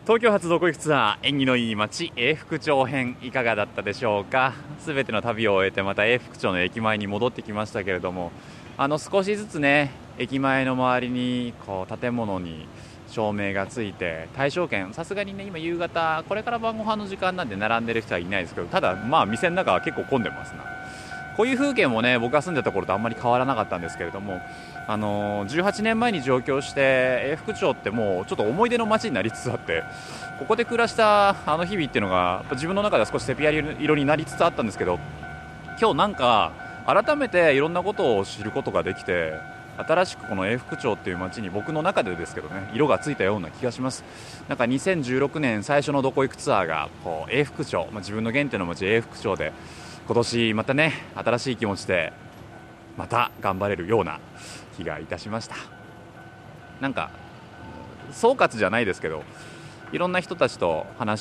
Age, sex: 20-39, male